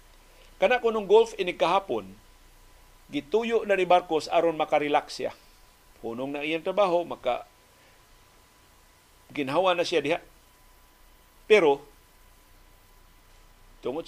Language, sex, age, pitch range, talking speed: Filipino, male, 50-69, 125-185 Hz, 95 wpm